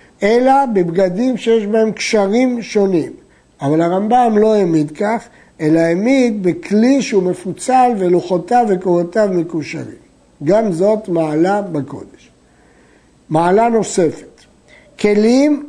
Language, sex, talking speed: Hebrew, male, 100 wpm